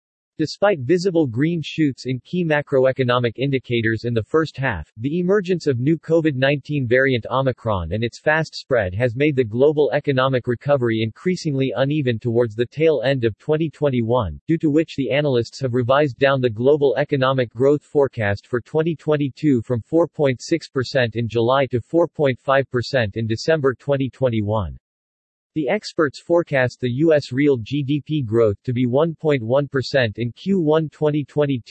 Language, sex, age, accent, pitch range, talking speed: English, male, 40-59, American, 120-150 Hz, 140 wpm